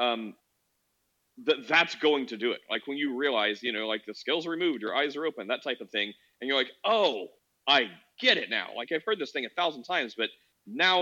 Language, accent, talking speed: English, American, 240 wpm